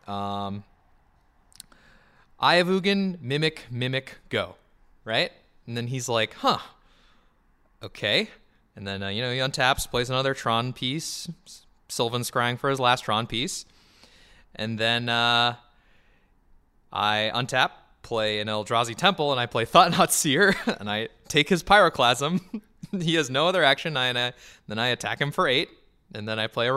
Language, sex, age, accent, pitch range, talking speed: English, male, 20-39, American, 105-135 Hz, 160 wpm